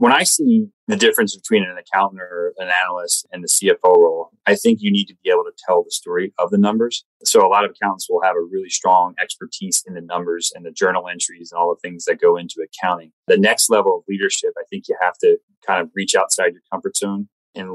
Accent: American